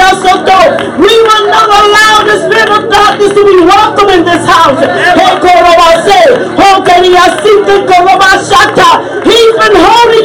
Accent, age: American, 40-59